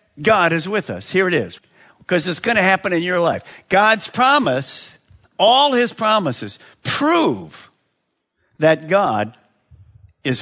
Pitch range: 155-225 Hz